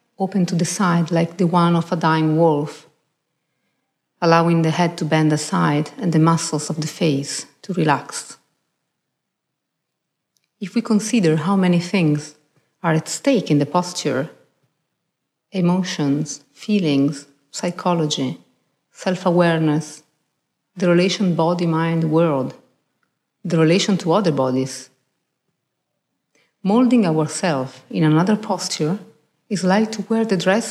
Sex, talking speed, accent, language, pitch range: female, 115 wpm, Italian, French, 155-190 Hz